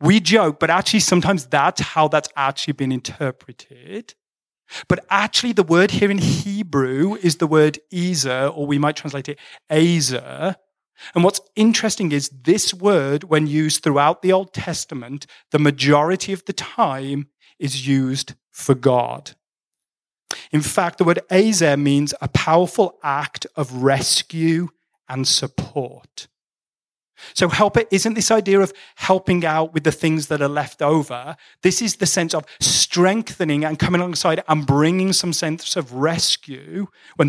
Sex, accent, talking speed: male, British, 150 wpm